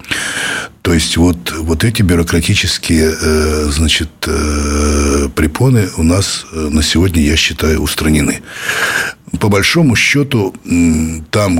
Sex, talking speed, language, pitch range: male, 100 wpm, Russian, 75-90 Hz